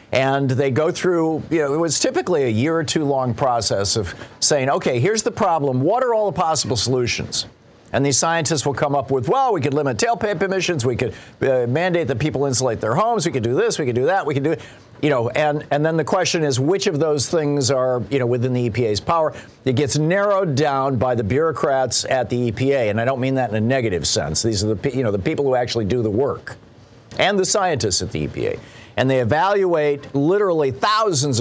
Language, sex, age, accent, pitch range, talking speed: English, male, 50-69, American, 120-155 Hz, 235 wpm